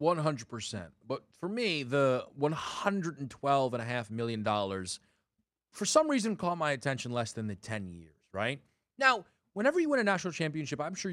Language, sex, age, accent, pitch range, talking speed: English, male, 30-49, American, 110-180 Hz, 145 wpm